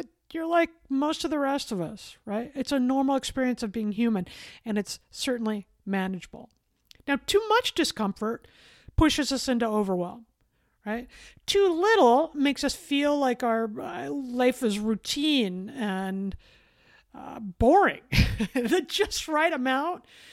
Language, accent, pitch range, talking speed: English, American, 220-305 Hz, 135 wpm